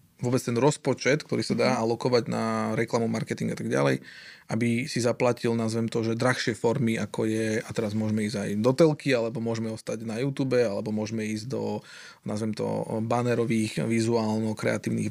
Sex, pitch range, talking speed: male, 115-130 Hz, 165 wpm